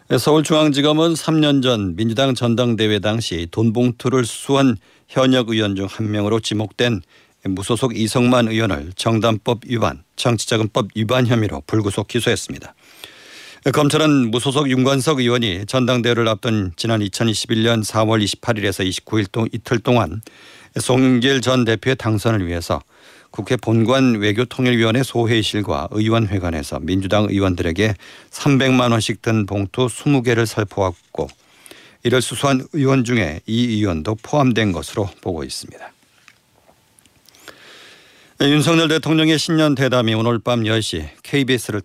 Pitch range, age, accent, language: 105-125 Hz, 50-69, native, Korean